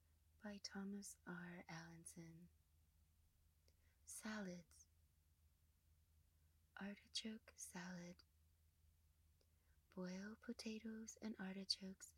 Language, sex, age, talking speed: English, female, 20-39, 55 wpm